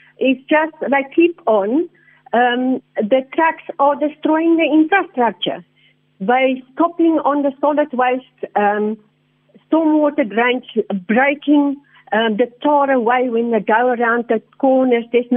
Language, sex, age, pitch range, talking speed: English, female, 50-69, 240-300 Hz, 130 wpm